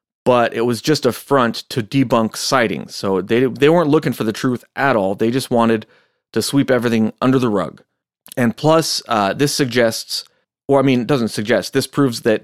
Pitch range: 110-145 Hz